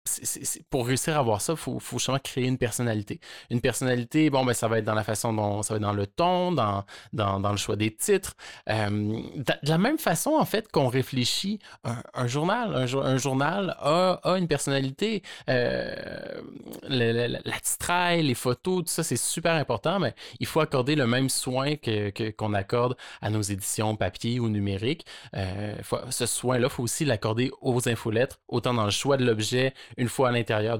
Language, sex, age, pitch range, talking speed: French, male, 20-39, 105-130 Hz, 210 wpm